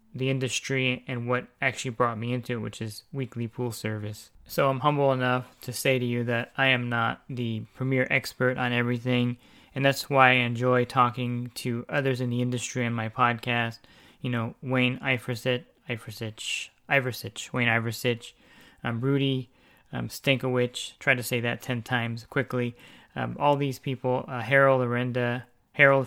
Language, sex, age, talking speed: English, male, 20-39, 165 wpm